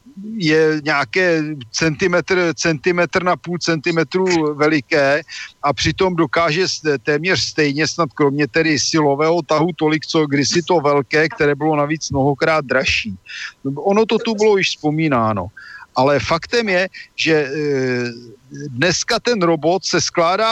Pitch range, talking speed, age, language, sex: 150-185 Hz, 130 wpm, 50-69, Slovak, male